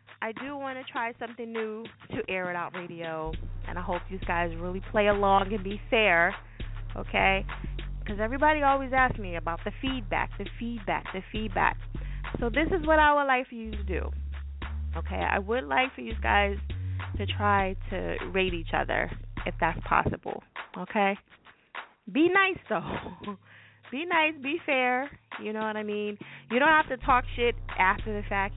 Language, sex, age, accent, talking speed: English, female, 20-39, American, 180 wpm